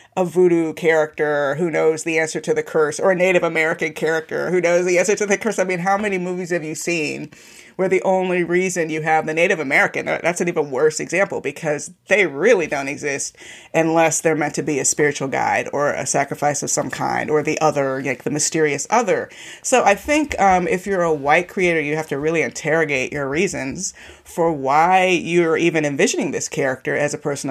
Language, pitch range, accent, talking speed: English, 155-195 Hz, American, 210 wpm